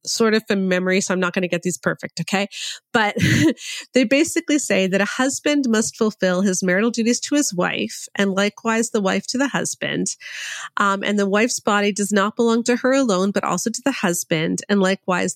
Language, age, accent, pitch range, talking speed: English, 30-49, American, 185-235 Hz, 205 wpm